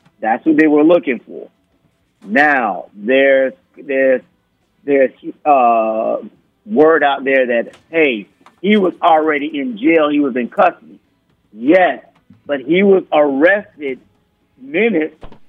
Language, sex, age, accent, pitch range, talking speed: English, male, 50-69, American, 125-170 Hz, 120 wpm